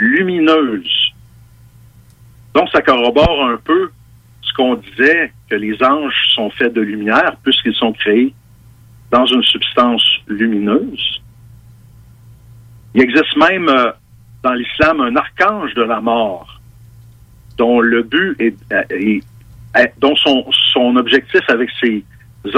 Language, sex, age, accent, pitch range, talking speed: French, male, 60-79, French, 115-125 Hz, 120 wpm